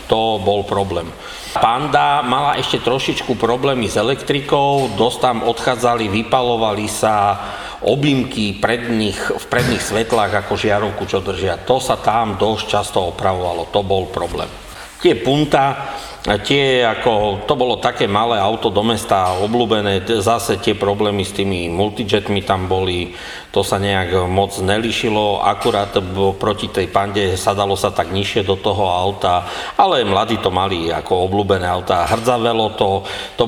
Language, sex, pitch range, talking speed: English, male, 95-110 Hz, 145 wpm